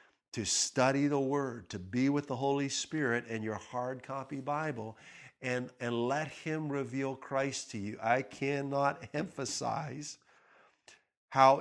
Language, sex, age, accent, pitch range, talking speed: English, male, 50-69, American, 115-135 Hz, 140 wpm